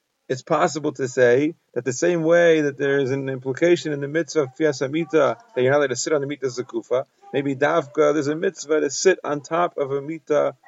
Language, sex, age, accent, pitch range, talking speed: English, male, 30-49, American, 130-165 Hz, 225 wpm